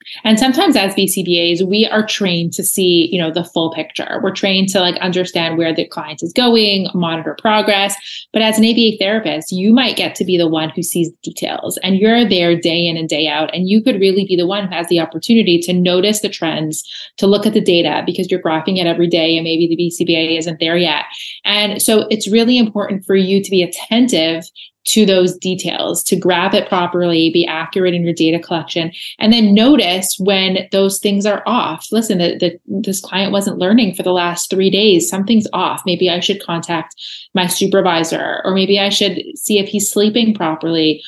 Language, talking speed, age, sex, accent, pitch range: English, 205 wpm, 30-49, female, American, 170-205 Hz